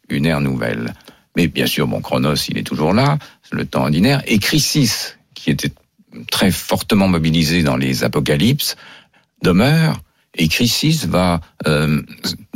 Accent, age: French, 50-69